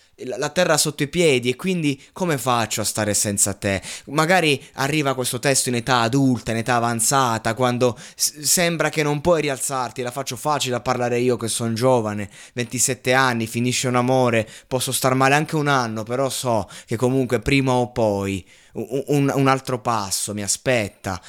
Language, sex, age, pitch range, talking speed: Italian, male, 20-39, 105-130 Hz, 175 wpm